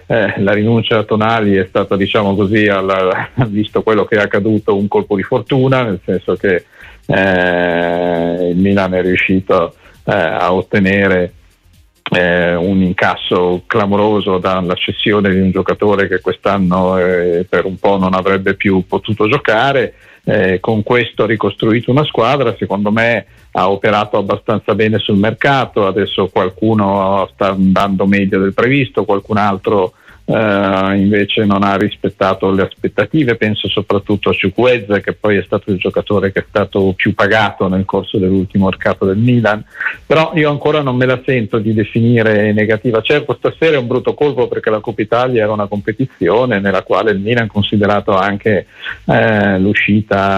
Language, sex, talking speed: Italian, male, 160 wpm